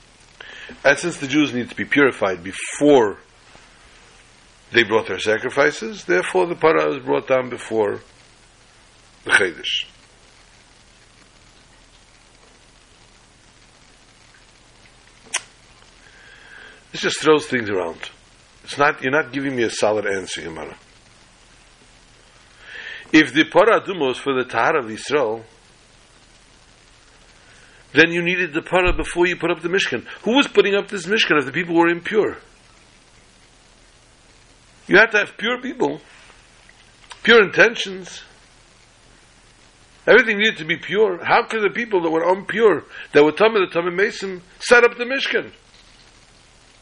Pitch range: 150-215 Hz